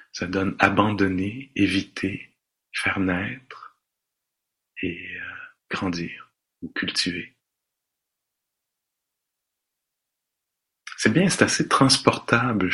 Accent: French